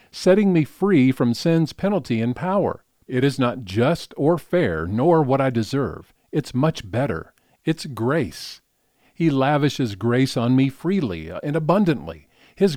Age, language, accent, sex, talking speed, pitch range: 50-69, English, American, male, 150 wpm, 115-160 Hz